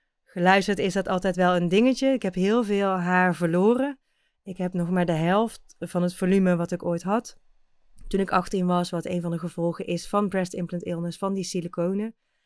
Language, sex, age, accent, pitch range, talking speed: Dutch, female, 30-49, Dutch, 175-210 Hz, 205 wpm